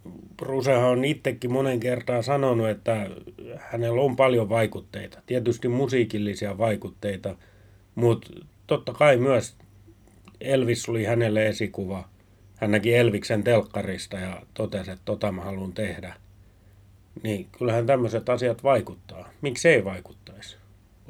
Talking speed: 115 wpm